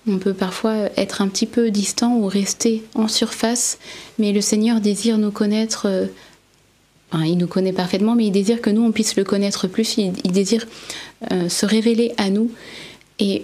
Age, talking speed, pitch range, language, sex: 30-49, 190 wpm, 190-220 Hz, French, female